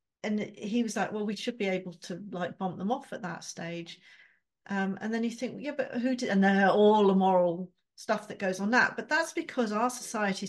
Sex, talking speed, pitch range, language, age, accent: female, 240 wpm, 190-260 Hz, English, 40-59, British